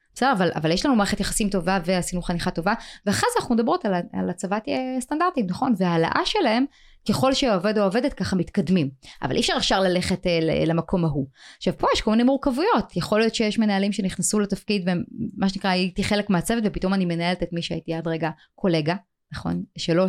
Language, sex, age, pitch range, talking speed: Hebrew, female, 20-39, 180-250 Hz, 190 wpm